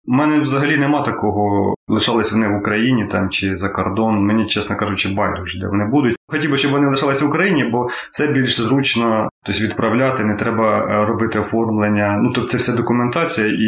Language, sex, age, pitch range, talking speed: Ukrainian, male, 20-39, 100-115 Hz, 190 wpm